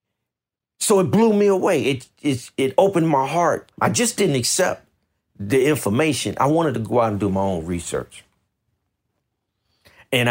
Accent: American